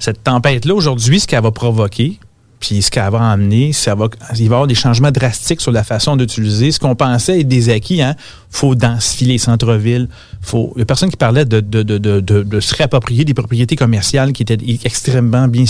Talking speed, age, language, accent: 230 wpm, 40-59, French, Canadian